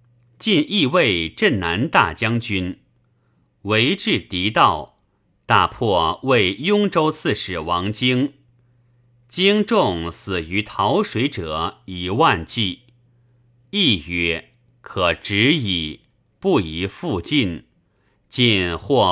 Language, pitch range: Chinese, 100-125 Hz